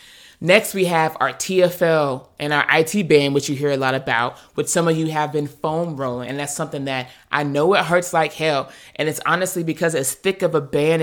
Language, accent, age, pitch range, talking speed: English, American, 20-39, 135-160 Hz, 230 wpm